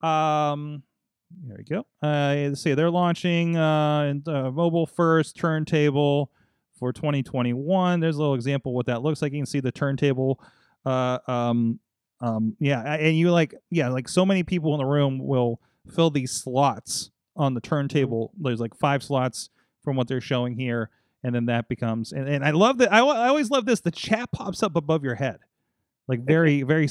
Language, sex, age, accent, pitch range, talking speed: English, male, 30-49, American, 130-170 Hz, 180 wpm